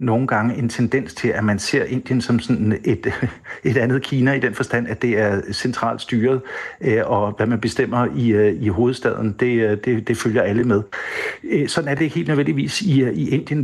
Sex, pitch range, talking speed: male, 110-135 Hz, 195 wpm